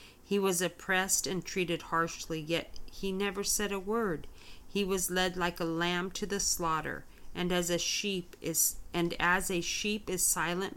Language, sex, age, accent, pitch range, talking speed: English, female, 40-59, American, 155-185 Hz, 180 wpm